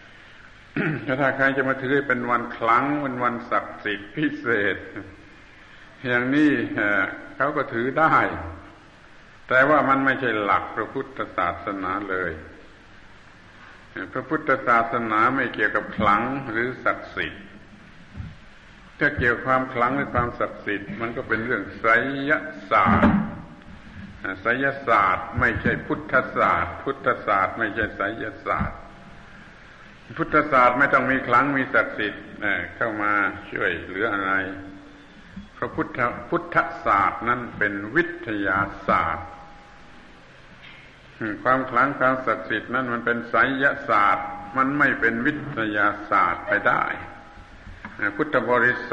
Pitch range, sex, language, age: 105-135 Hz, male, Thai, 70-89